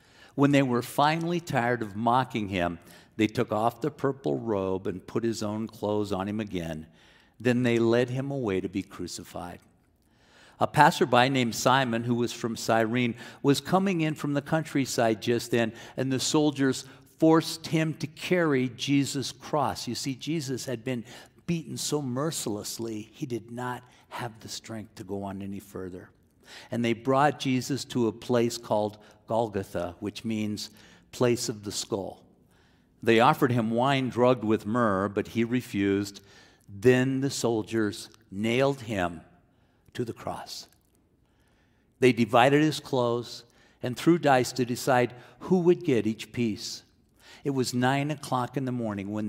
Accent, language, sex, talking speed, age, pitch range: American, English, male, 160 wpm, 50-69, 105-130 Hz